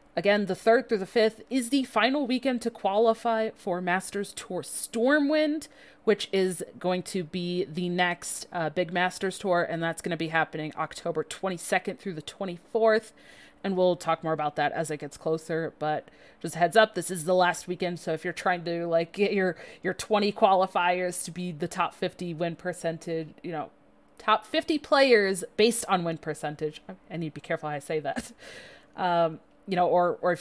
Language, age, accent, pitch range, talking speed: English, 30-49, American, 170-220 Hz, 195 wpm